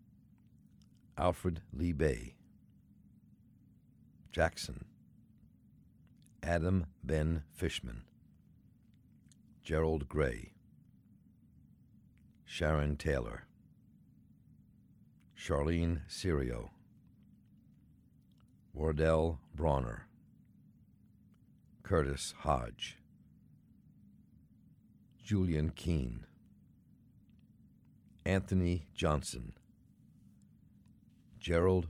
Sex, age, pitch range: male, 60-79, 75-90 Hz